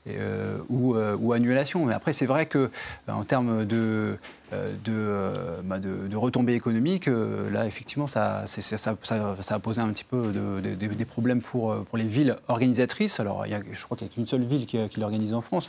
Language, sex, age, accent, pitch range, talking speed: French, male, 30-49, French, 110-140 Hz, 235 wpm